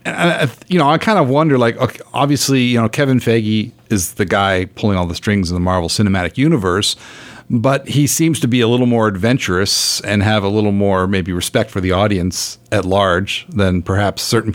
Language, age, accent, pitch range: English, 50-69, American, 95-120 Hz